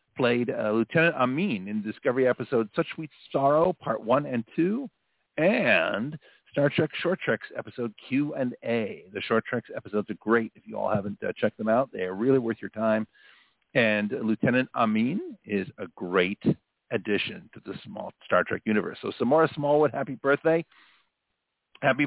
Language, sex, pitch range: English, male, 115-170 Hz